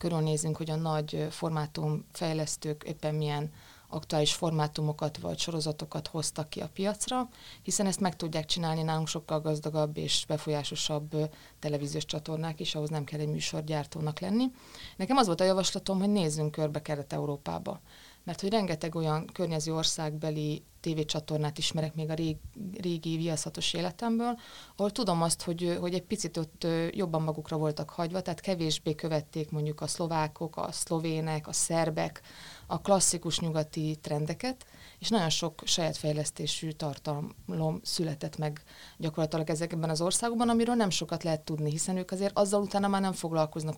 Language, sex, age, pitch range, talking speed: Hungarian, female, 30-49, 155-175 Hz, 150 wpm